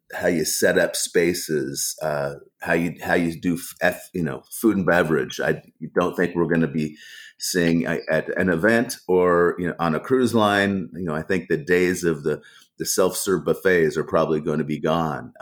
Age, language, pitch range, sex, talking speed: 30-49, English, 80-90 Hz, male, 205 wpm